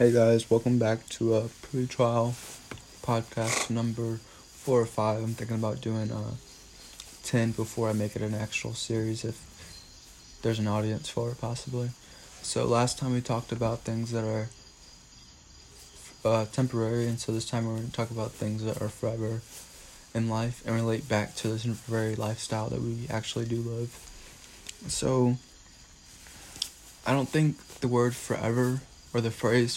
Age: 20-39